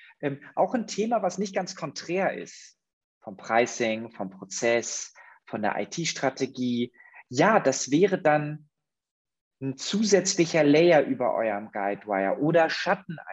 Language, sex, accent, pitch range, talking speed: German, male, German, 120-175 Hz, 125 wpm